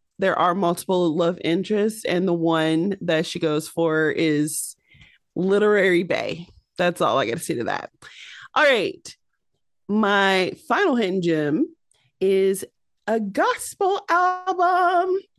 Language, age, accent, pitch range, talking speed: English, 30-49, American, 160-210 Hz, 130 wpm